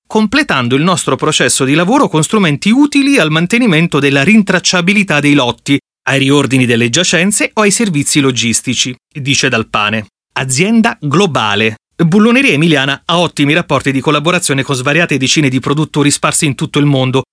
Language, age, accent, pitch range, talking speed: Italian, 30-49, native, 135-200 Hz, 150 wpm